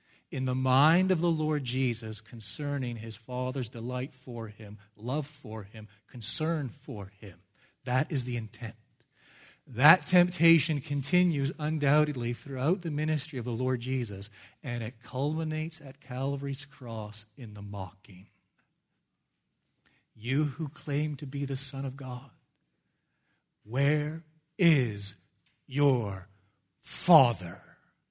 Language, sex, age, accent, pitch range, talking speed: English, male, 40-59, American, 115-145 Hz, 120 wpm